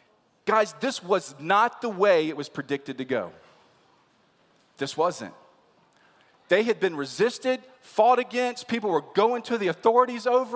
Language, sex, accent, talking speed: English, male, American, 150 wpm